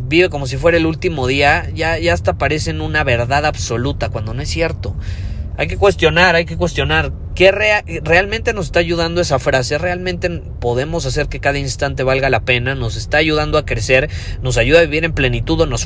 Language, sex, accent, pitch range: Spanish, male, Mexican, 100-135 Hz